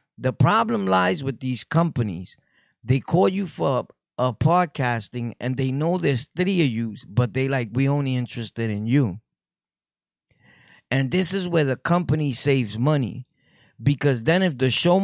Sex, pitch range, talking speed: male, 120-150 Hz, 165 wpm